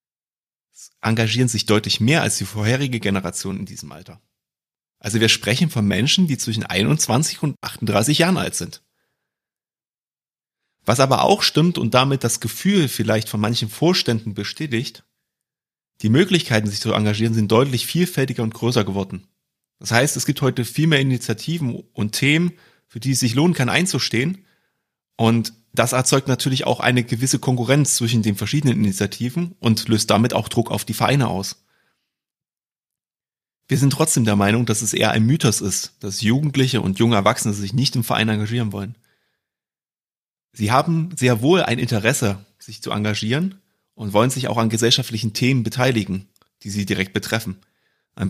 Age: 30-49